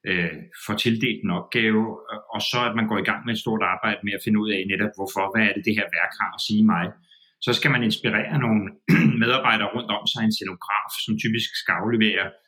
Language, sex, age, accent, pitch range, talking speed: Danish, male, 30-49, native, 110-150 Hz, 220 wpm